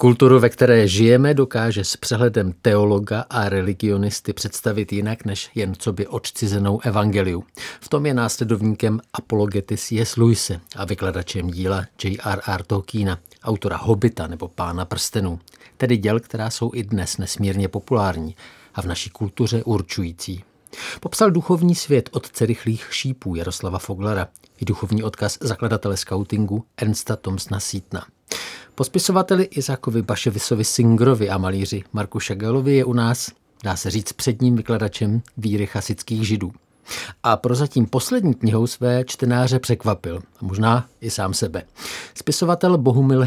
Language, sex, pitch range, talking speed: Czech, male, 100-120 Hz, 135 wpm